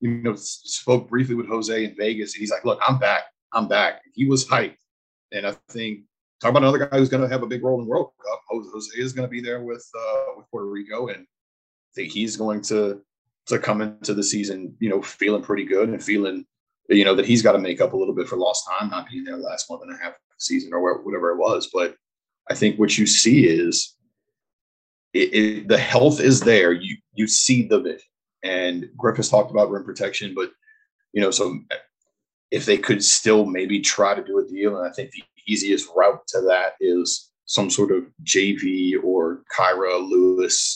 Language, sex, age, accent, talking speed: English, male, 30-49, American, 220 wpm